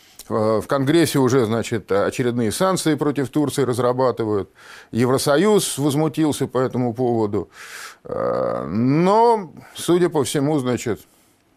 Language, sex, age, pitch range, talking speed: Russian, male, 50-69, 115-155 Hz, 100 wpm